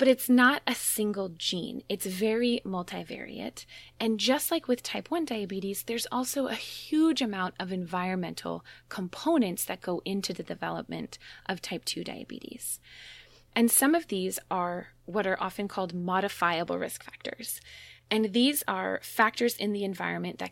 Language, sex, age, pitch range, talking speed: English, female, 20-39, 175-230 Hz, 155 wpm